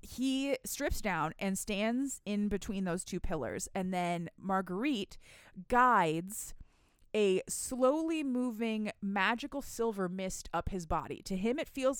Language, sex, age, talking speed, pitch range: English, female, 20-39, 135 wpm, 180-235 Hz